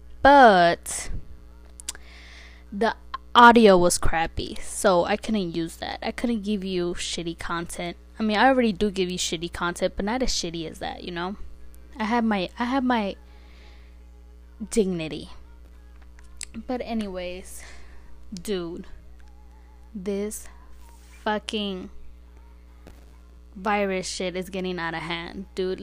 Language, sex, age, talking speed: English, female, 20-39, 125 wpm